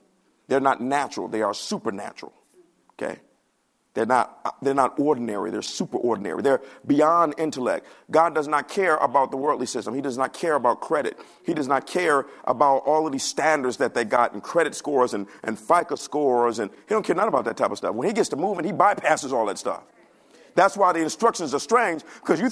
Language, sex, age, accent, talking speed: English, male, 50-69, American, 215 wpm